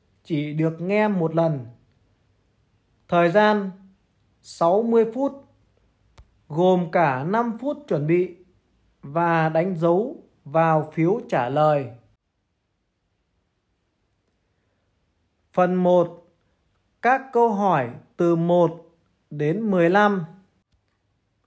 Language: Vietnamese